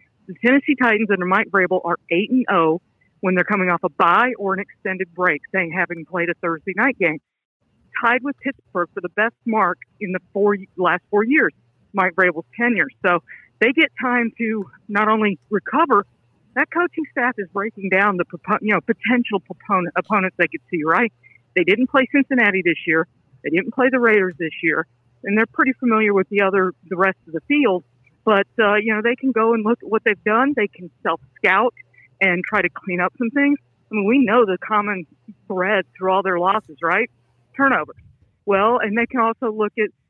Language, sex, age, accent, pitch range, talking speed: English, female, 50-69, American, 185-235 Hz, 200 wpm